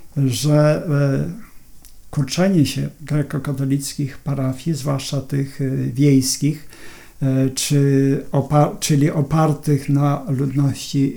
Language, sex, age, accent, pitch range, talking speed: Polish, male, 50-69, native, 130-145 Hz, 75 wpm